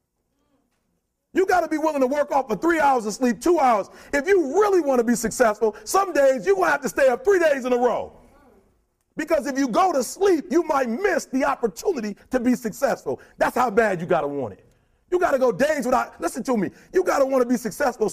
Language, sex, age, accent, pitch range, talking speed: English, male, 40-59, American, 190-295 Hz, 245 wpm